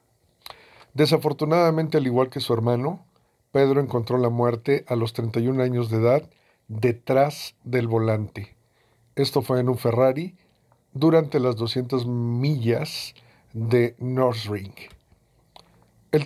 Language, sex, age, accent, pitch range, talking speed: Spanish, male, 50-69, Mexican, 115-145 Hz, 120 wpm